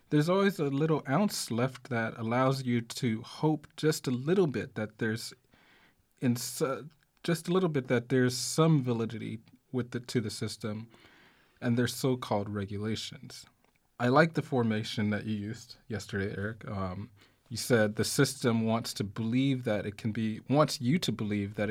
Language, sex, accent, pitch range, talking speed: English, male, American, 105-130 Hz, 170 wpm